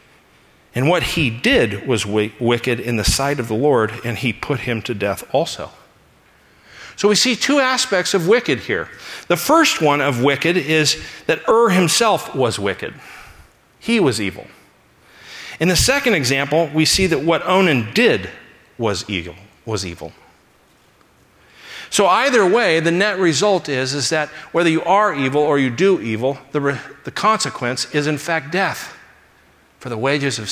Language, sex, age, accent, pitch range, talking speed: English, male, 50-69, American, 115-165 Hz, 165 wpm